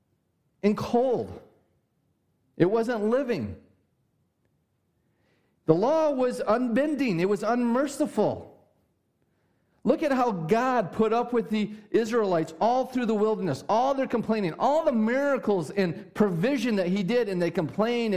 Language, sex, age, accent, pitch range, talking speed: English, male, 40-59, American, 160-225 Hz, 130 wpm